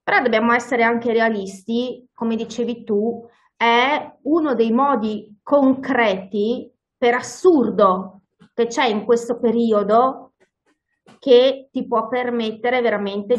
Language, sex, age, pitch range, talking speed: Italian, female, 30-49, 205-240 Hz, 110 wpm